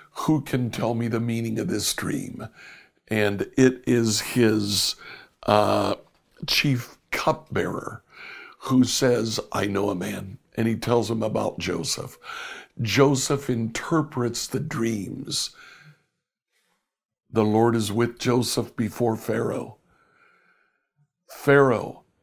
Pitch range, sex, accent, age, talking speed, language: 110-140 Hz, male, American, 60-79, 110 wpm, English